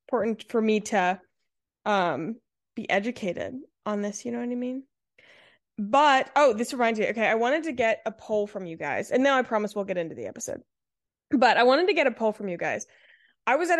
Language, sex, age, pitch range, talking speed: English, female, 20-39, 210-275 Hz, 220 wpm